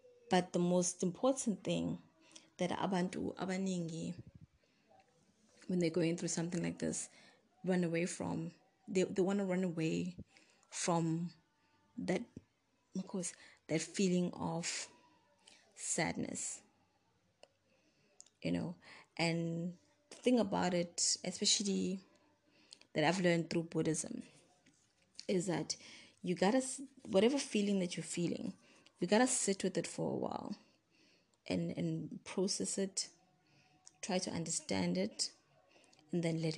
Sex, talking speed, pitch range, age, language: female, 125 wpm, 165-195 Hz, 20-39, English